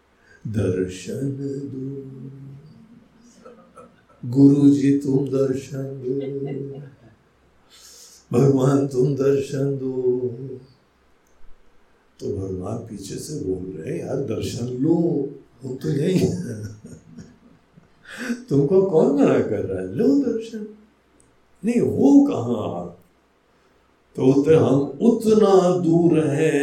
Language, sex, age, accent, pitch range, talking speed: Hindi, male, 60-79, native, 115-155 Hz, 90 wpm